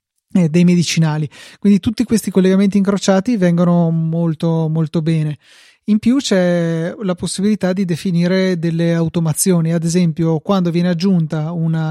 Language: Italian